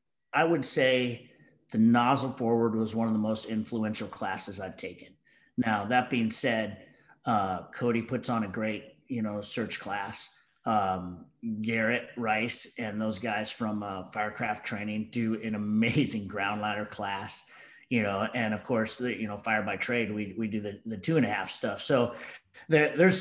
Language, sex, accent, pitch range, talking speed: English, male, American, 105-125 Hz, 180 wpm